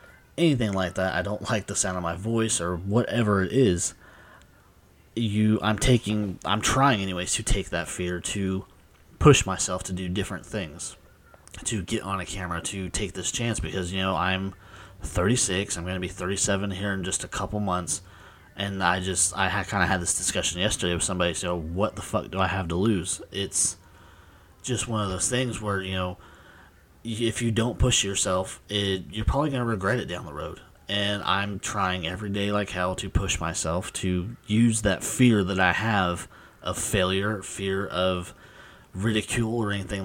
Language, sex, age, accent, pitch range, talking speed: English, male, 20-39, American, 90-105 Hz, 190 wpm